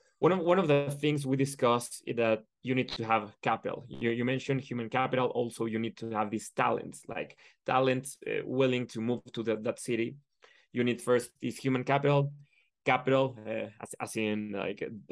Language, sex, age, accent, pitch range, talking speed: English, male, 20-39, Mexican, 115-130 Hz, 195 wpm